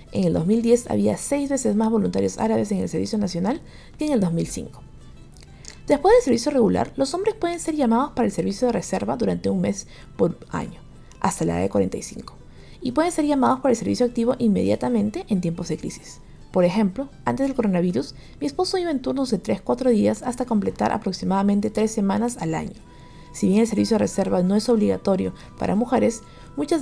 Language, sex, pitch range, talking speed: Spanish, female, 180-245 Hz, 190 wpm